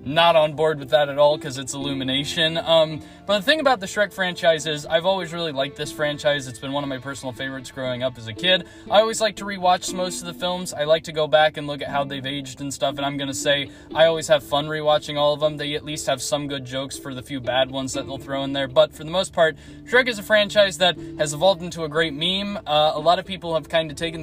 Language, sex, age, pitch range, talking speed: English, male, 10-29, 140-170 Hz, 280 wpm